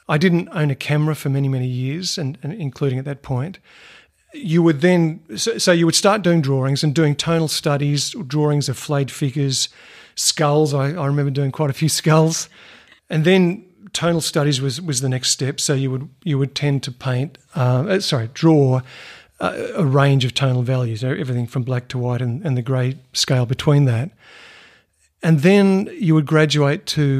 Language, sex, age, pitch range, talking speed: English, male, 50-69, 130-160 Hz, 195 wpm